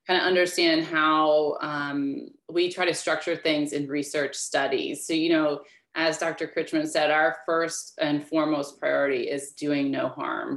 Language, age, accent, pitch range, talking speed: English, 30-49, American, 150-185 Hz, 165 wpm